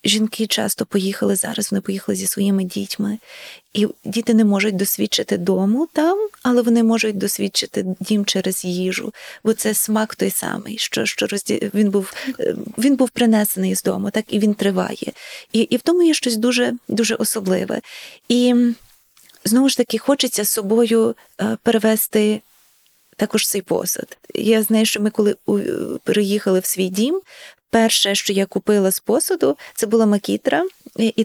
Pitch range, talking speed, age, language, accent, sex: 200-235 Hz, 155 wpm, 20-39, Ukrainian, native, female